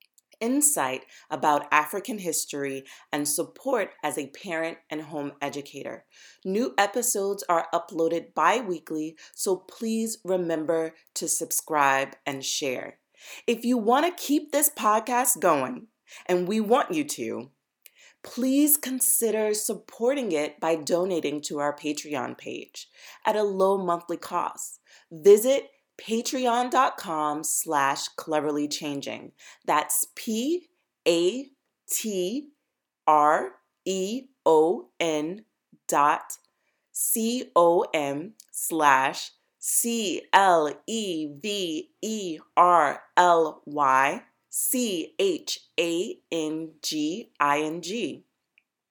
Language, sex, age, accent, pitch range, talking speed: English, female, 30-49, American, 150-245 Hz, 75 wpm